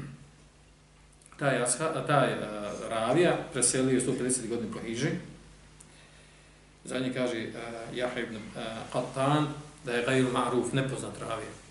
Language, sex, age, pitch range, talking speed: English, male, 40-59, 110-135 Hz, 115 wpm